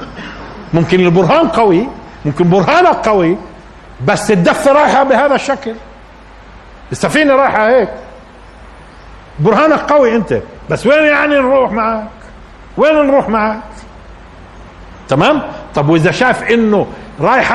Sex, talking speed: male, 105 wpm